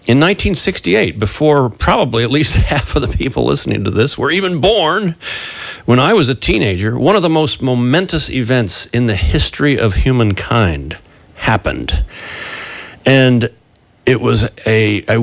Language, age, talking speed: English, 50-69, 150 wpm